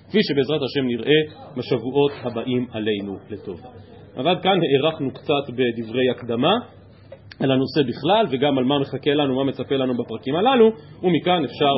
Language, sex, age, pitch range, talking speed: Hebrew, male, 30-49, 125-180 Hz, 150 wpm